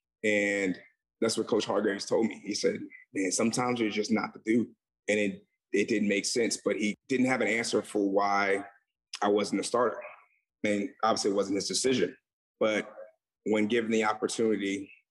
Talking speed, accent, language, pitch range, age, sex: 180 wpm, American, English, 100-115 Hz, 30-49, male